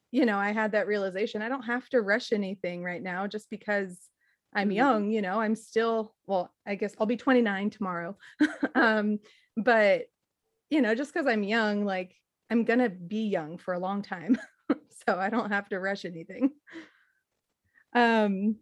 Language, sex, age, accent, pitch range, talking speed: English, female, 30-49, American, 195-240 Hz, 175 wpm